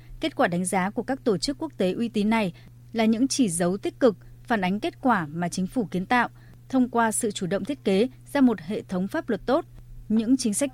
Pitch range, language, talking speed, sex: 185-245 Hz, Vietnamese, 250 wpm, female